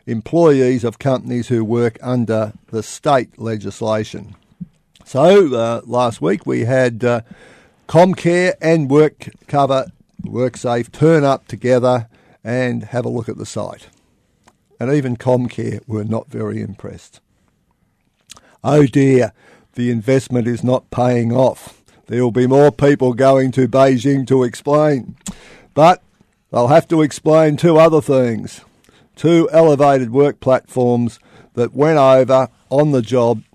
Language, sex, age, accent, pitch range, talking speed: English, male, 50-69, Australian, 115-140 Hz, 130 wpm